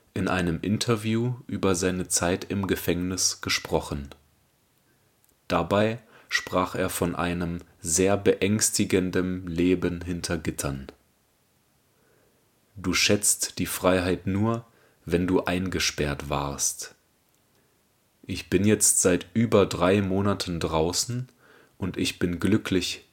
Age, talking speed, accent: 30-49, 105 wpm, German